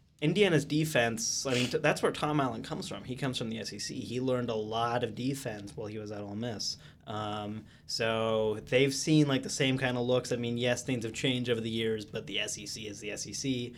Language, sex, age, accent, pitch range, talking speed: English, male, 20-39, American, 110-130 Hz, 230 wpm